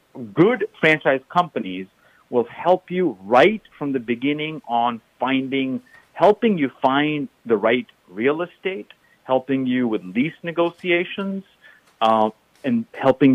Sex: male